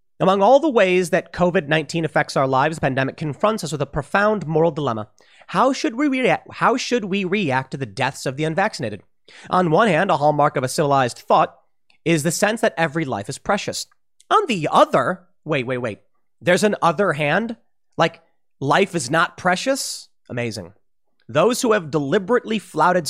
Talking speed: 180 wpm